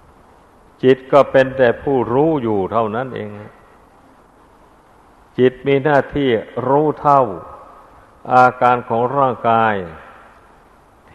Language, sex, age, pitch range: Thai, male, 60-79, 105-130 Hz